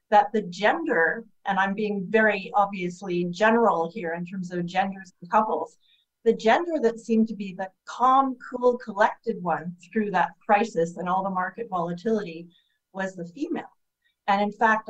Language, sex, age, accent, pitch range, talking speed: English, female, 40-59, American, 185-220 Hz, 165 wpm